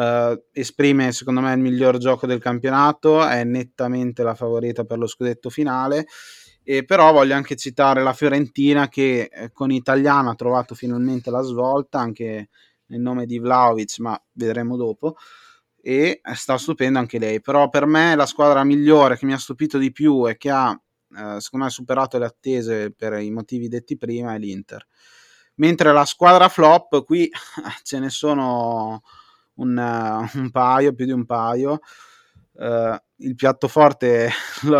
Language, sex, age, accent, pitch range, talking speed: Italian, male, 20-39, native, 120-140 Hz, 155 wpm